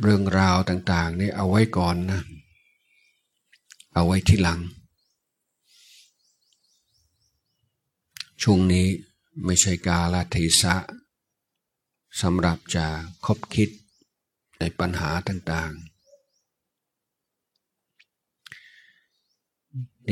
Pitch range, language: 85-100 Hz, Thai